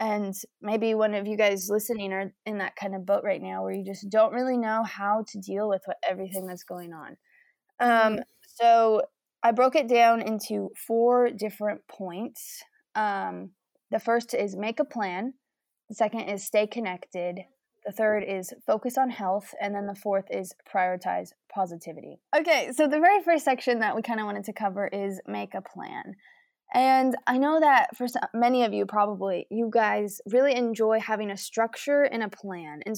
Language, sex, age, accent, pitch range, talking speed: English, female, 20-39, American, 200-250 Hz, 185 wpm